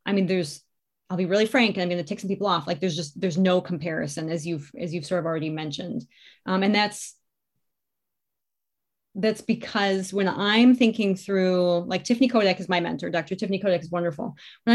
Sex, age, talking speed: female, 20-39, 205 wpm